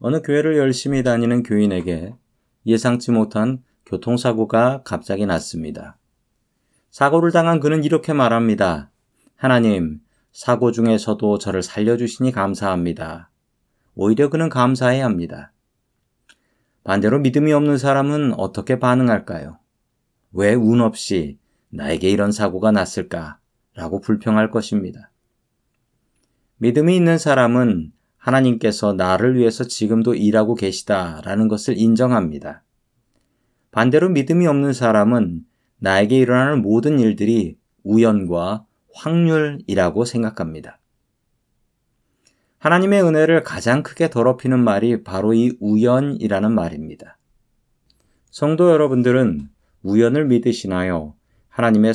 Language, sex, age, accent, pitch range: Korean, male, 40-59, native, 105-135 Hz